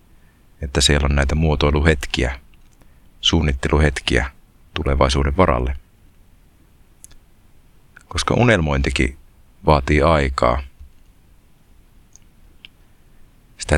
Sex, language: male, Finnish